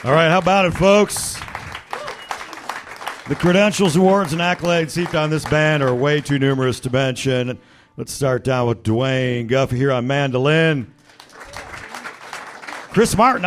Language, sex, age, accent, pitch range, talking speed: English, male, 50-69, American, 120-175 Hz, 140 wpm